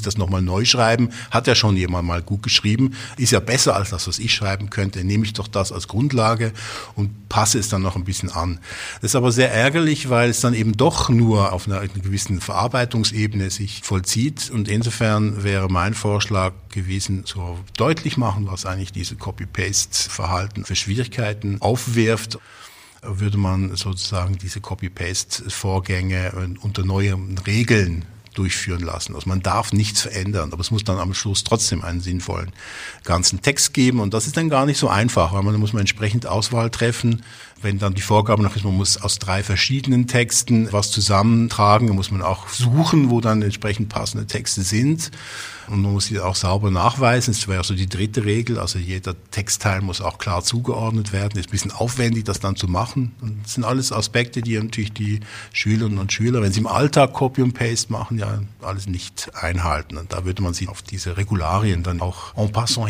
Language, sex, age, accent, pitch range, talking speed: German, male, 50-69, German, 95-115 Hz, 190 wpm